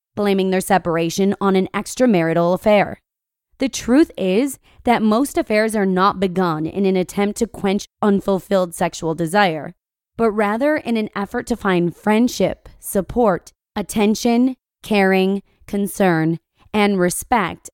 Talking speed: 130 wpm